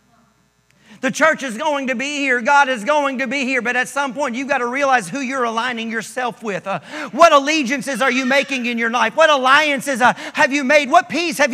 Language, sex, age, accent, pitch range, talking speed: English, male, 40-59, American, 230-330 Hz, 230 wpm